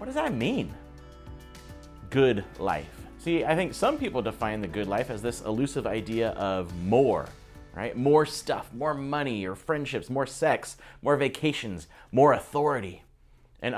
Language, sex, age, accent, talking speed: English, male, 30-49, American, 150 wpm